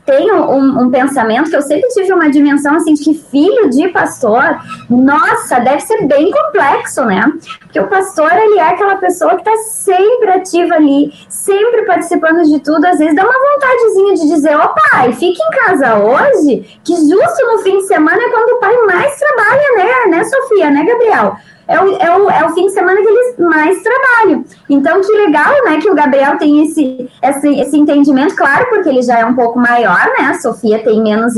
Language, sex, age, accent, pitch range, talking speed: Portuguese, male, 20-39, Brazilian, 285-405 Hz, 205 wpm